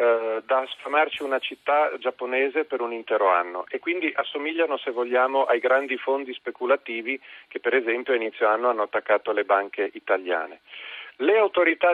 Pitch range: 120-165 Hz